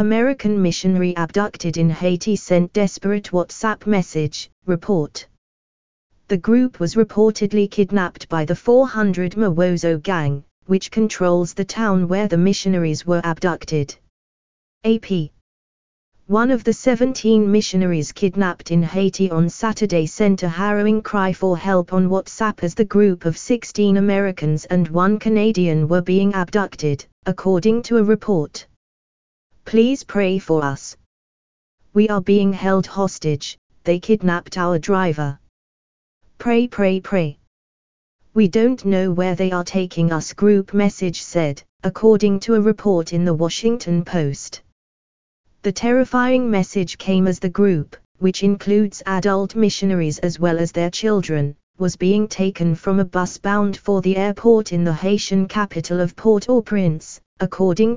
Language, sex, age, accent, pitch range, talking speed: English, female, 20-39, British, 165-205 Hz, 135 wpm